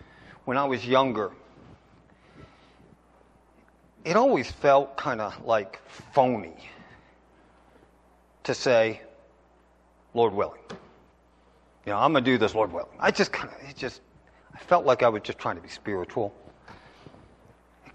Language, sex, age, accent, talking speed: English, male, 40-59, American, 135 wpm